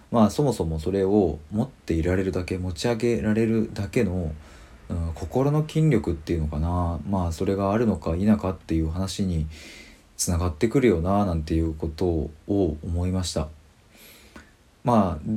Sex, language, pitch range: male, Japanese, 80-115 Hz